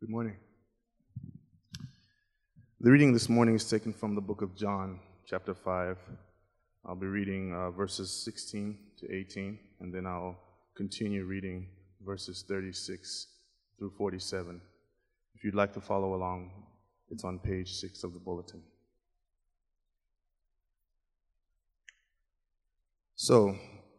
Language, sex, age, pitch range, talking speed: English, male, 20-39, 95-115 Hz, 115 wpm